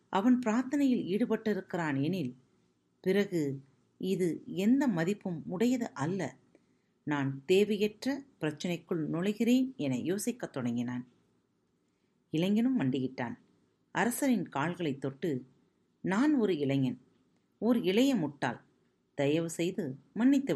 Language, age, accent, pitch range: Tamil, 40-59, native, 135-220 Hz